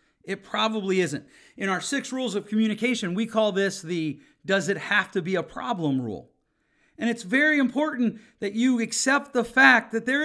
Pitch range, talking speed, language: 180-230 Hz, 185 wpm, English